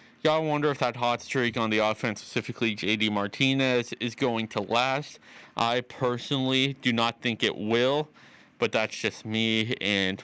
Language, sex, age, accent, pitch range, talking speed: English, male, 20-39, American, 110-145 Hz, 165 wpm